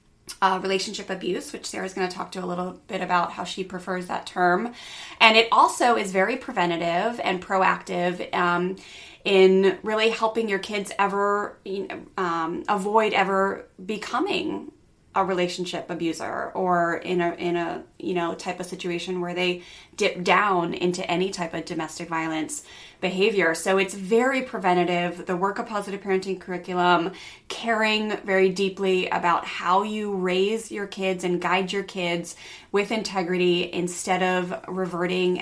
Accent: American